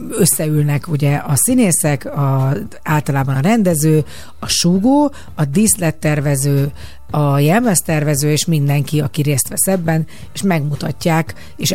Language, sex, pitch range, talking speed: Hungarian, female, 150-185 Hz, 115 wpm